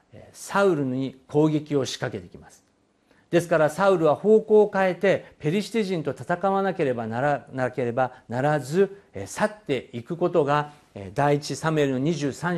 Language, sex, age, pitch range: Japanese, male, 50-69, 125-160 Hz